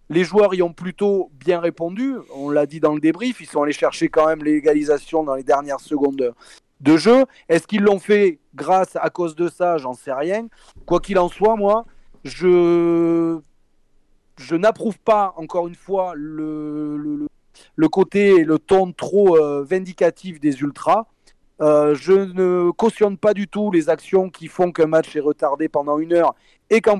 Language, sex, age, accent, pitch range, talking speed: French, male, 30-49, French, 150-185 Hz, 175 wpm